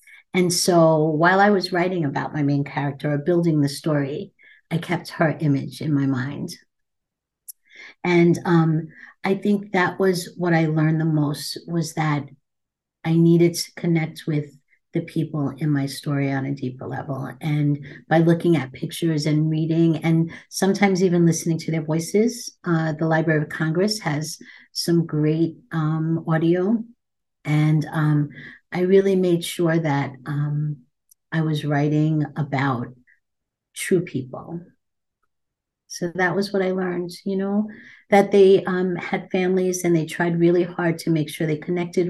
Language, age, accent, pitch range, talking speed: English, 50-69, American, 150-175 Hz, 155 wpm